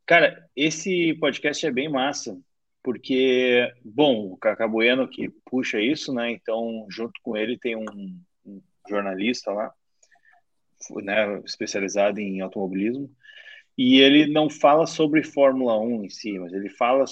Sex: male